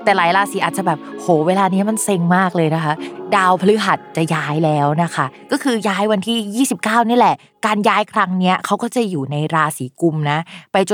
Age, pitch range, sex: 20-39, 160-220 Hz, female